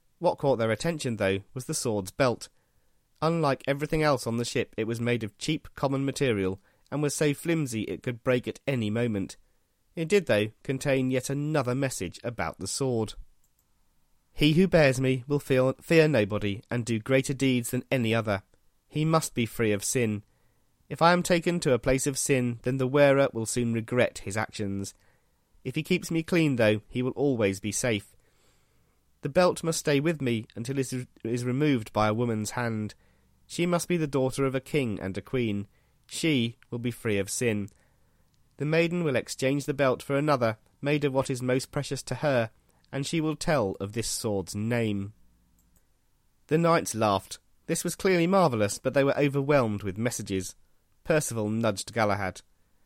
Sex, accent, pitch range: male, British, 105-140 Hz